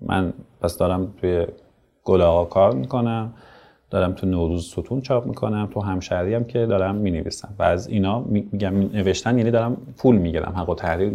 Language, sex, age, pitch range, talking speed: Persian, male, 30-49, 95-115 Hz, 170 wpm